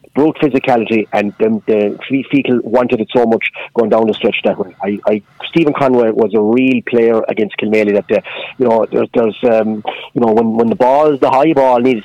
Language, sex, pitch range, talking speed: English, male, 110-125 Hz, 220 wpm